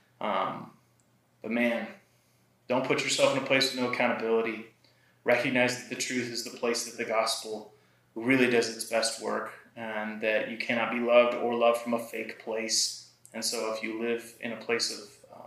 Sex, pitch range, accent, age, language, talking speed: male, 110-120 Hz, American, 20-39, English, 185 wpm